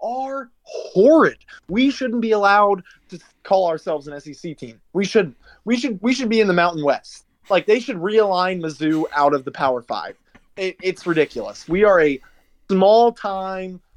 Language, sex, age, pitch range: English, male, 20-39, 155-215 Hz